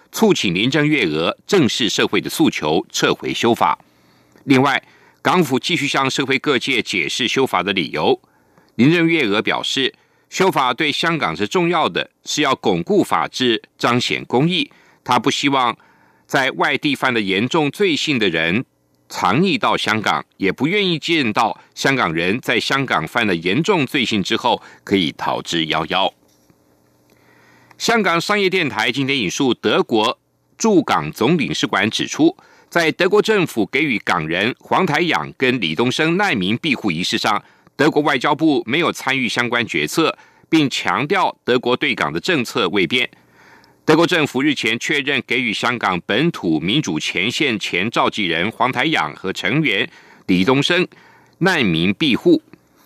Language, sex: German, male